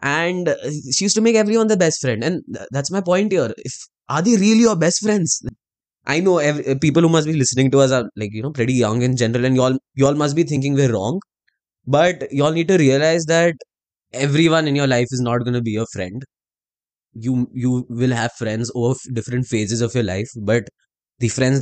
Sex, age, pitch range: male, 20-39, 115-150 Hz